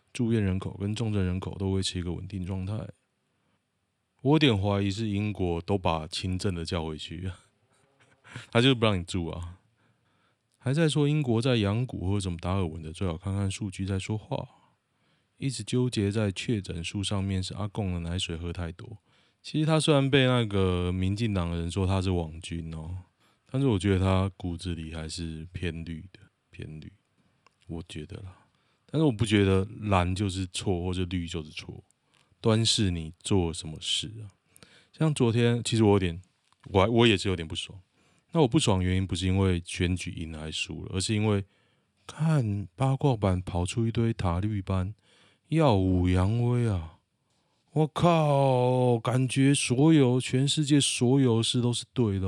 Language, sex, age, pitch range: Chinese, male, 20-39, 90-120 Hz